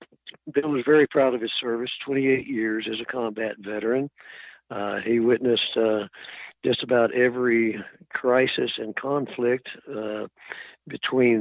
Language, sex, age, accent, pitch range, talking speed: English, male, 60-79, American, 110-130 Hz, 130 wpm